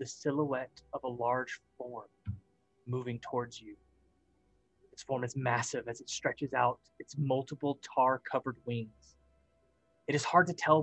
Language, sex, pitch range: English, male, 130-155 Hz